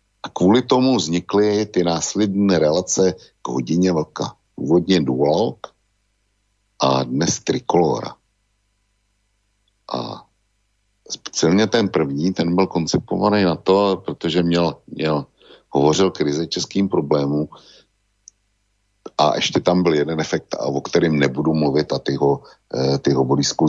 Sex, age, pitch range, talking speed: male, 60-79, 70-100 Hz, 115 wpm